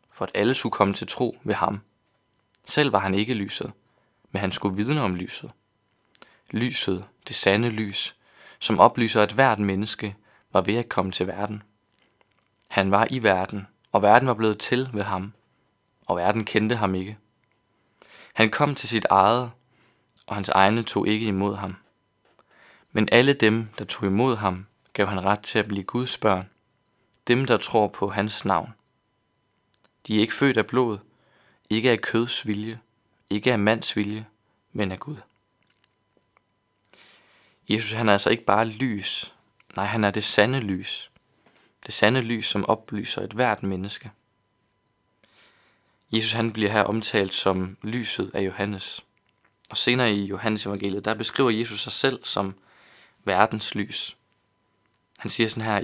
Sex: male